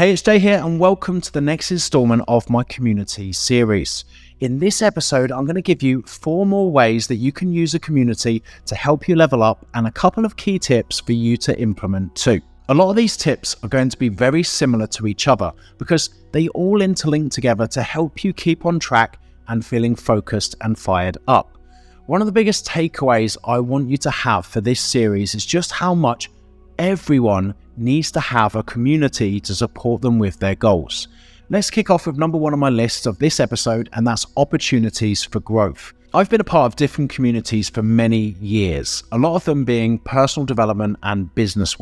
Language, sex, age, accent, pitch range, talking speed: English, male, 30-49, British, 105-155 Hz, 205 wpm